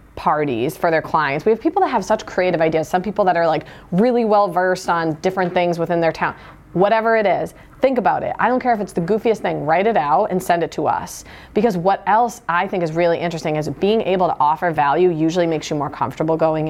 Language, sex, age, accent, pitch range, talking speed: English, female, 30-49, American, 160-205 Hz, 245 wpm